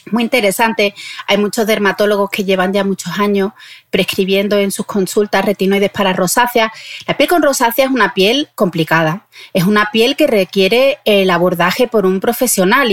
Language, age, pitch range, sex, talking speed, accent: Spanish, 30-49, 195-255 Hz, female, 165 wpm, Spanish